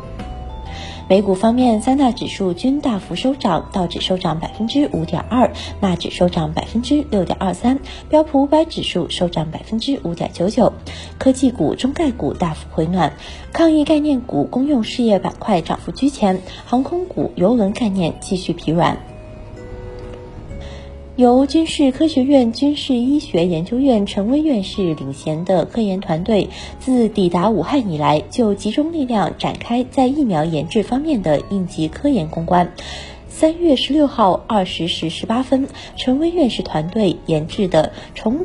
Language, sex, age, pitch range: Chinese, female, 20-39, 175-275 Hz